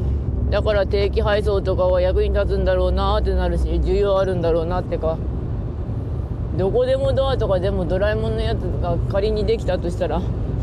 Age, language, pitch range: 20-39, Japanese, 85-120 Hz